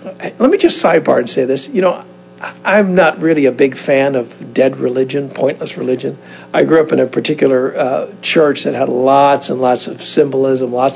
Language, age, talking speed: English, 60-79, 195 wpm